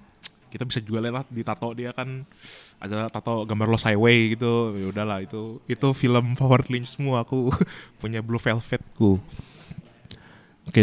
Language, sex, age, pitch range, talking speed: Indonesian, male, 20-39, 110-140 Hz, 155 wpm